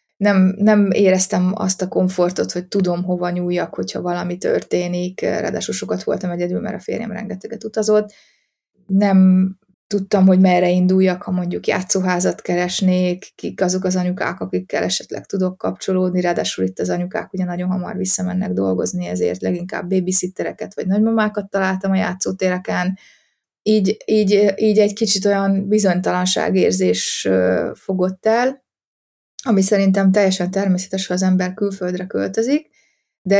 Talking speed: 135 wpm